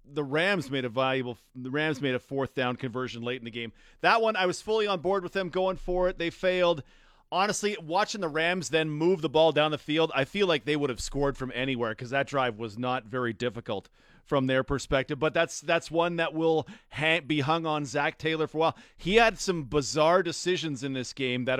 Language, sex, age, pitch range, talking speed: English, male, 40-59, 145-210 Hz, 235 wpm